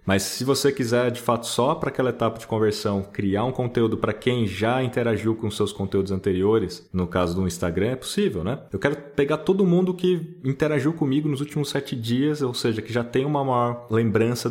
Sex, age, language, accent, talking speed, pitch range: male, 20-39, Portuguese, Brazilian, 210 wpm, 110-135 Hz